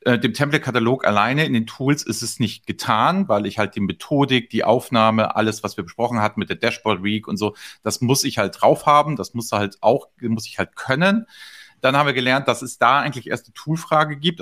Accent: German